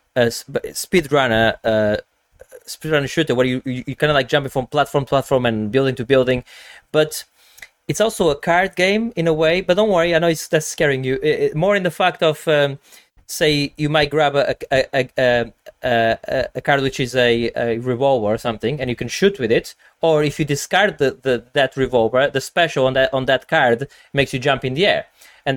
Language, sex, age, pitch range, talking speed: English, male, 30-49, 125-150 Hz, 225 wpm